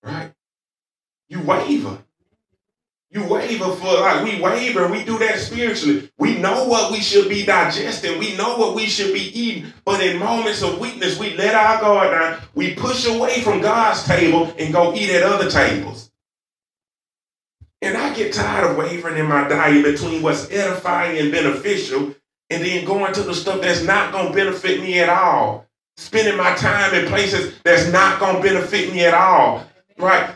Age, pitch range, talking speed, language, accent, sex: 30-49, 170-220 Hz, 180 wpm, English, American, male